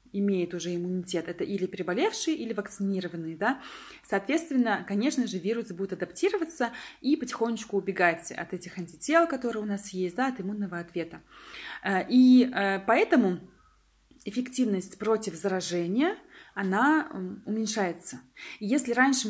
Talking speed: 120 wpm